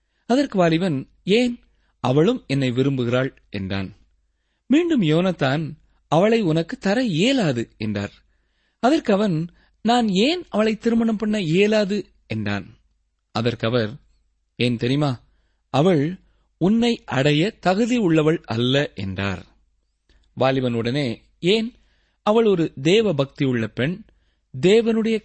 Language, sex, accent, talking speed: Tamil, male, native, 95 wpm